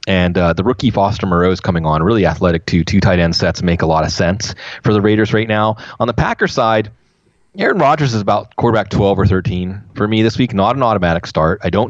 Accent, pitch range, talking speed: American, 90-110 Hz, 240 wpm